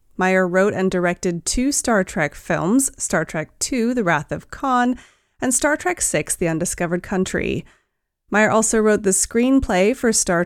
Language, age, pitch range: English, 30-49, 185-255 Hz